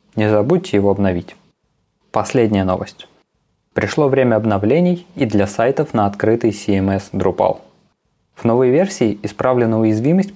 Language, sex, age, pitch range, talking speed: Russian, male, 20-39, 105-130 Hz, 120 wpm